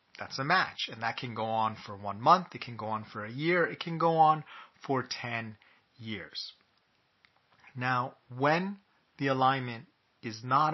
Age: 30-49